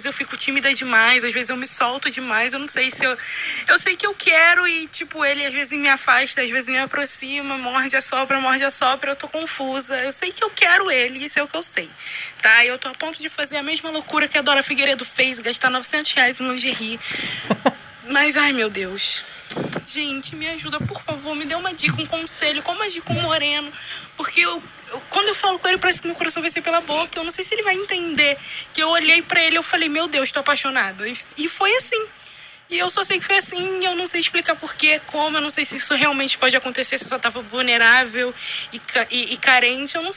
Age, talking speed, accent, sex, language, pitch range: 20-39, 240 wpm, Brazilian, female, Portuguese, 265-330 Hz